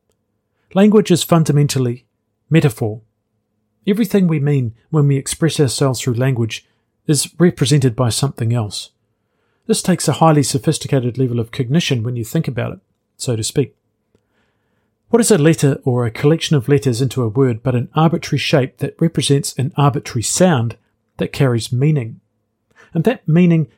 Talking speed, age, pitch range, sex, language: 155 wpm, 40-59, 115-155 Hz, male, English